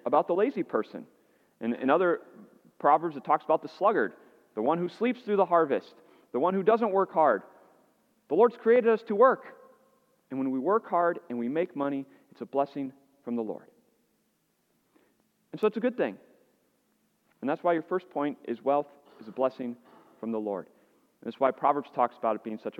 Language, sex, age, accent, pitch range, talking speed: English, male, 30-49, American, 120-170 Hz, 200 wpm